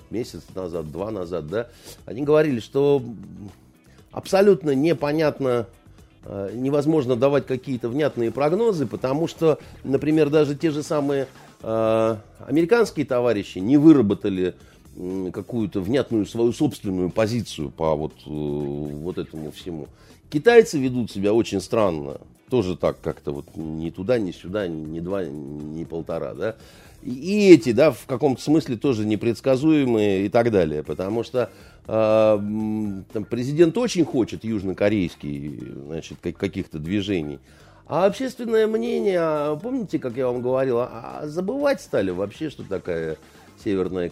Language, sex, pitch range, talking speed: Russian, male, 95-155 Hz, 120 wpm